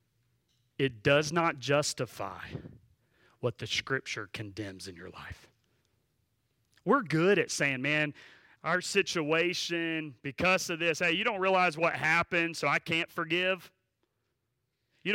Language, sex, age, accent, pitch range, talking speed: English, male, 40-59, American, 135-210 Hz, 125 wpm